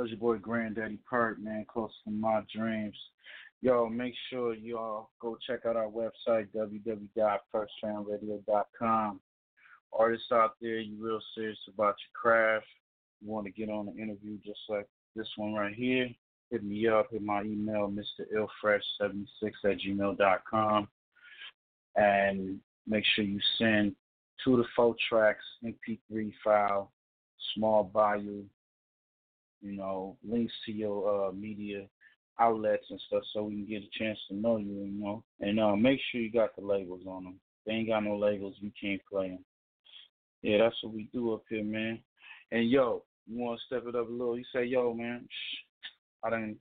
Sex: male